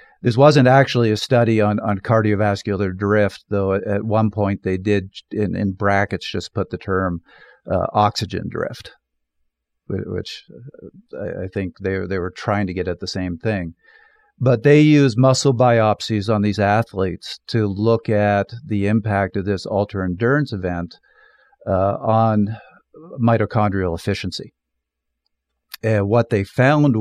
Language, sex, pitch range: English, male, 95-115 Hz